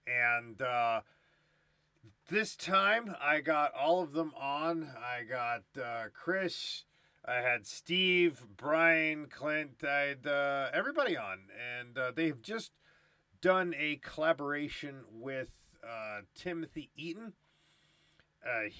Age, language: 40-59, English